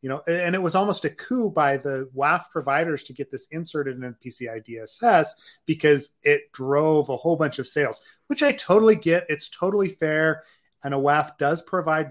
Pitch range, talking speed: 130-165 Hz, 195 wpm